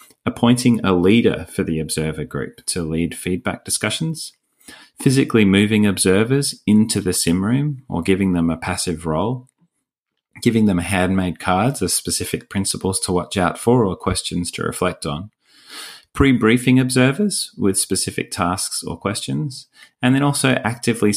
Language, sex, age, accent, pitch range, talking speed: English, male, 30-49, Australian, 80-110 Hz, 145 wpm